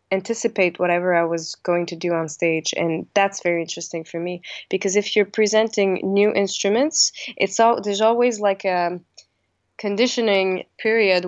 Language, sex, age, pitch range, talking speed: English, female, 20-39, 170-195 Hz, 155 wpm